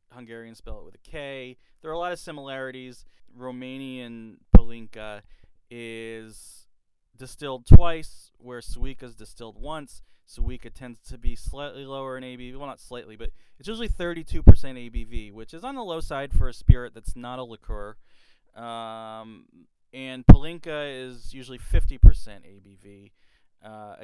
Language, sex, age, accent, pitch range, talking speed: English, male, 20-39, American, 115-140 Hz, 145 wpm